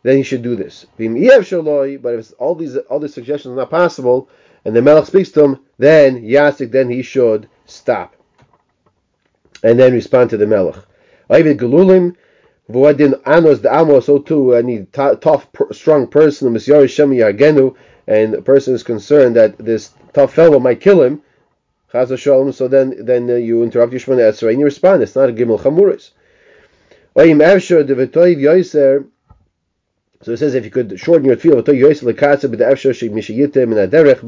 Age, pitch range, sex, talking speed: 30-49, 120-145 Hz, male, 140 wpm